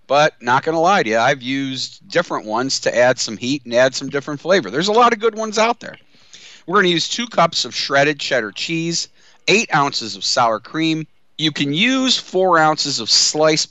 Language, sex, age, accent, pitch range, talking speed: English, male, 50-69, American, 120-165 Hz, 220 wpm